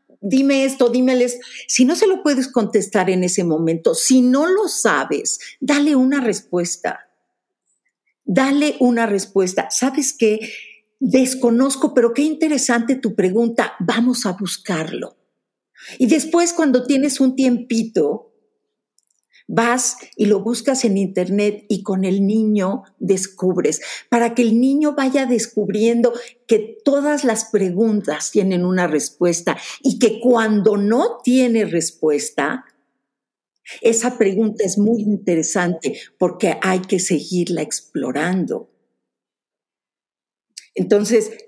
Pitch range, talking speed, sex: 190-255 Hz, 115 wpm, female